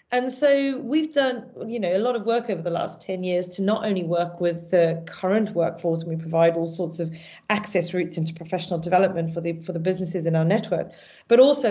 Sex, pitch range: female, 175-220 Hz